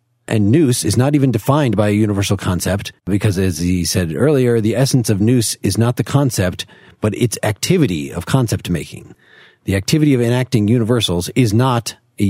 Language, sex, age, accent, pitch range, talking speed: English, male, 40-59, American, 105-125 Hz, 180 wpm